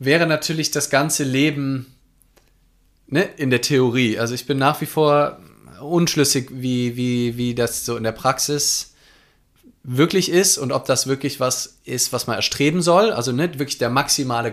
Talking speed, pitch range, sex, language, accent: 175 wpm, 115-145 Hz, male, German, German